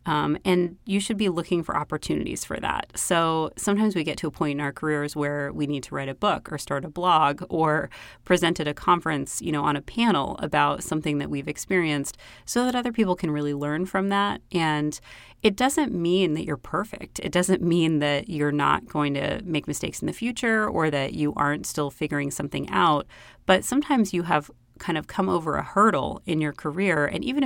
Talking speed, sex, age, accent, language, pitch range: 215 wpm, female, 30-49, American, English, 145-195 Hz